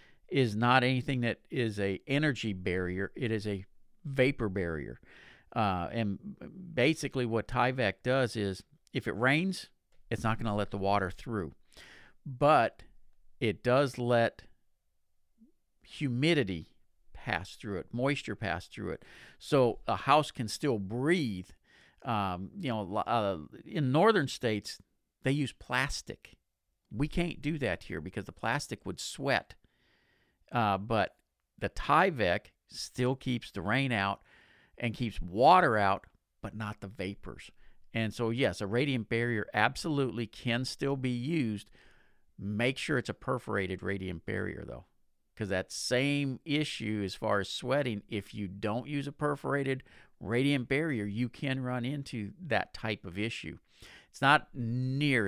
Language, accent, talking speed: English, American, 145 wpm